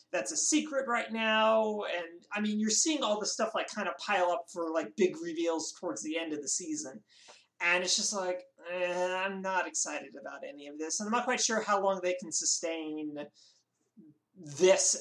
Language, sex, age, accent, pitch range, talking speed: English, male, 30-49, American, 160-235 Hz, 205 wpm